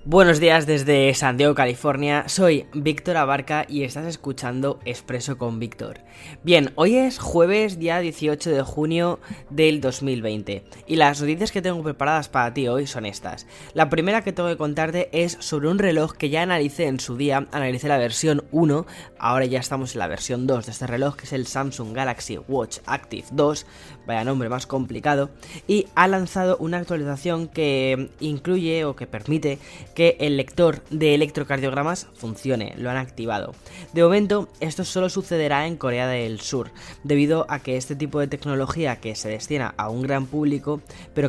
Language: Spanish